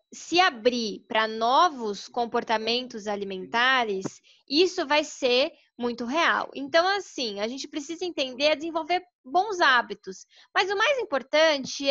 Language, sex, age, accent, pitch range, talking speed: Portuguese, female, 20-39, Brazilian, 230-295 Hz, 120 wpm